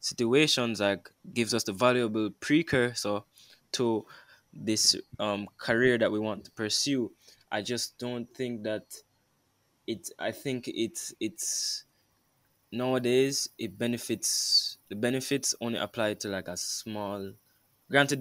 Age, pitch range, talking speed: 20-39, 110-135 Hz, 125 wpm